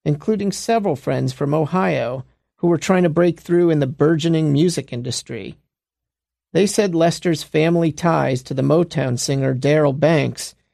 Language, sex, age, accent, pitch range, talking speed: English, male, 40-59, American, 135-170 Hz, 150 wpm